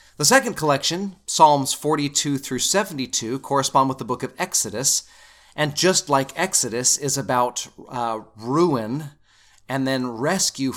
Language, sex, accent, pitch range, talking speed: English, male, American, 110-140 Hz, 135 wpm